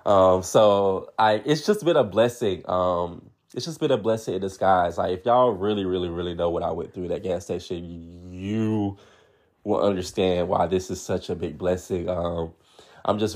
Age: 20-39